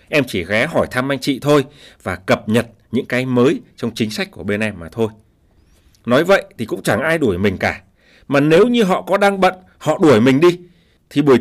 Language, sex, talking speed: Vietnamese, male, 230 wpm